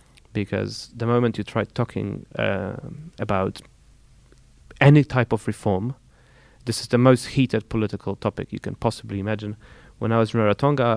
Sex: male